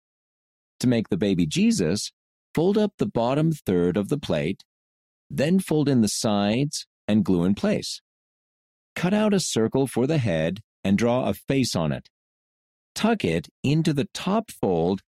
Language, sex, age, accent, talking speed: English, male, 40-59, American, 165 wpm